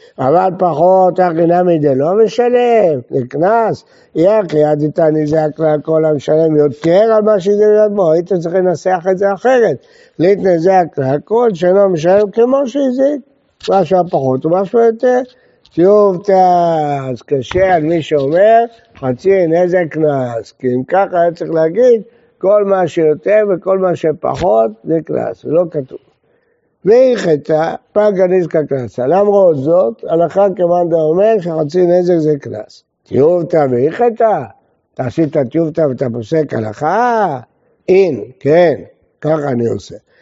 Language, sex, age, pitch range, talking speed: Hebrew, male, 60-79, 155-200 Hz, 125 wpm